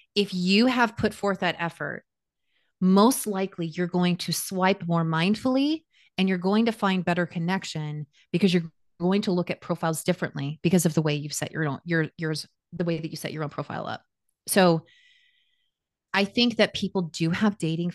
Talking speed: 190 wpm